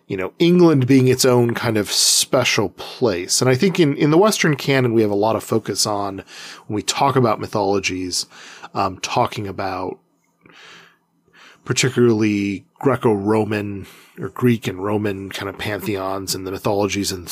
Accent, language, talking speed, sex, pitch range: American, English, 165 wpm, male, 95-125 Hz